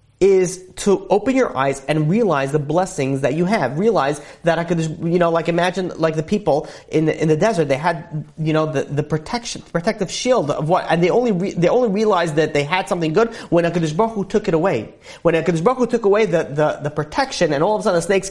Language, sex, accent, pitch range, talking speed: English, male, American, 170-245 Hz, 235 wpm